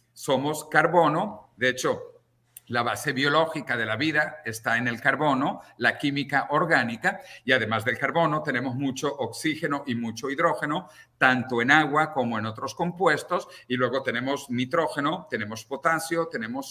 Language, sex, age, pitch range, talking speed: English, male, 50-69, 125-170 Hz, 145 wpm